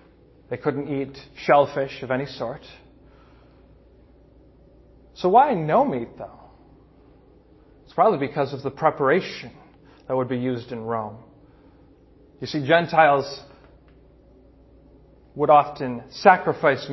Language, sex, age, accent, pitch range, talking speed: English, male, 30-49, American, 135-165 Hz, 105 wpm